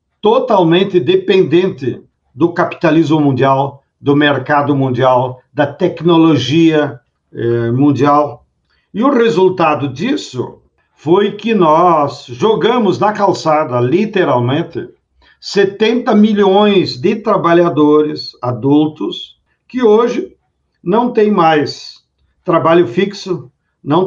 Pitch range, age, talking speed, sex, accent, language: 145-195 Hz, 50-69, 90 wpm, male, Brazilian, Portuguese